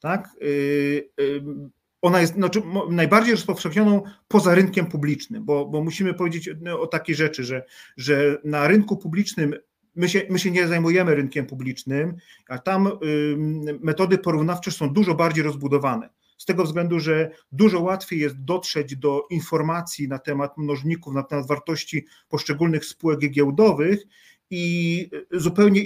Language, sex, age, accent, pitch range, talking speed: Polish, male, 40-59, native, 145-180 Hz, 135 wpm